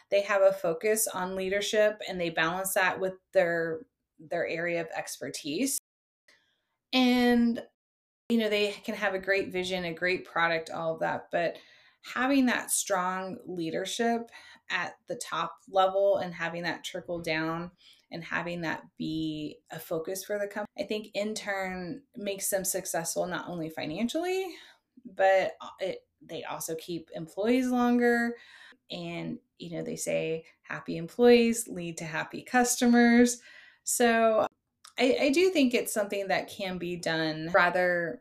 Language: English